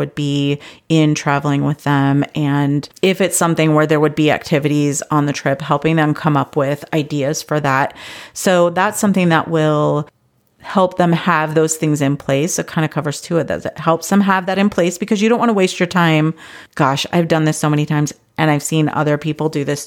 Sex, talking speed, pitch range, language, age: female, 225 wpm, 150-175 Hz, English, 30-49